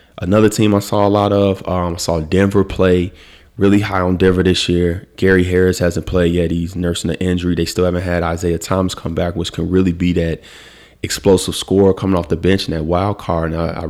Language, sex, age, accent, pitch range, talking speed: English, male, 20-39, American, 85-95 Hz, 230 wpm